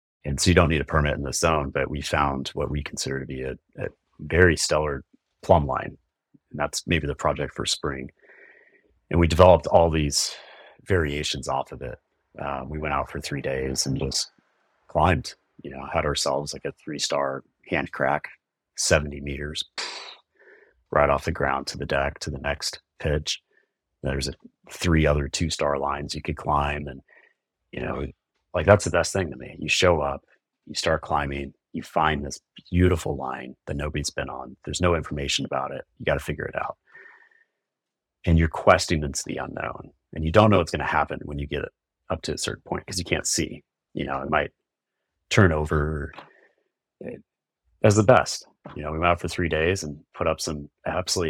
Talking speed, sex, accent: 195 wpm, male, American